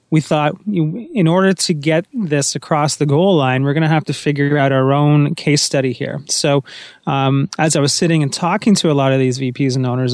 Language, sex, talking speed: English, male, 230 wpm